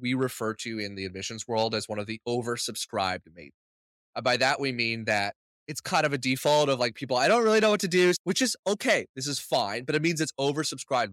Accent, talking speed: American, 245 wpm